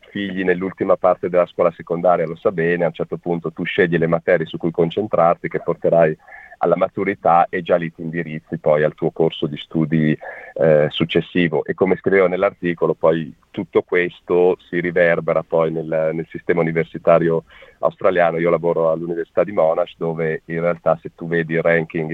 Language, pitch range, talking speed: Italian, 80-85 Hz, 175 wpm